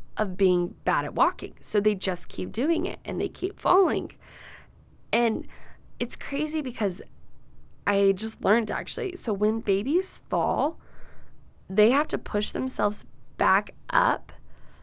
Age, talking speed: 20-39, 140 wpm